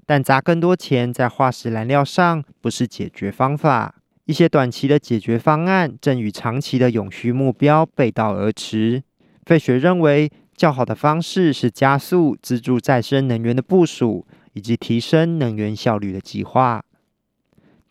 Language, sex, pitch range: Chinese, male, 120-155 Hz